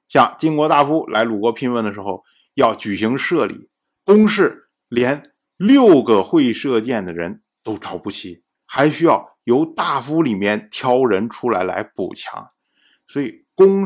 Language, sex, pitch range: Chinese, male, 140-215 Hz